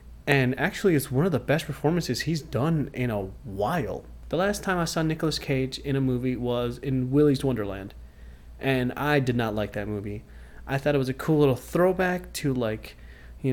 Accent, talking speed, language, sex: American, 200 wpm, English, male